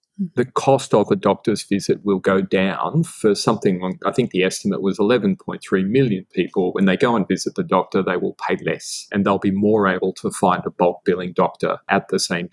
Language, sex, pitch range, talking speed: English, male, 100-125 Hz, 210 wpm